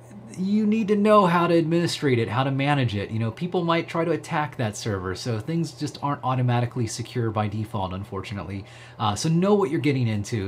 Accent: American